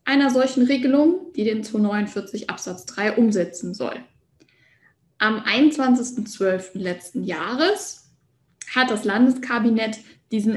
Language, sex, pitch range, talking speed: German, female, 195-255 Hz, 100 wpm